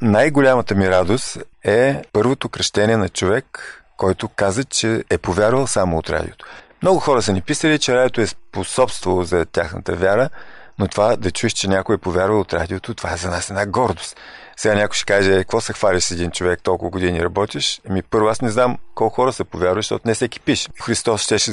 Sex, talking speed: male, 200 wpm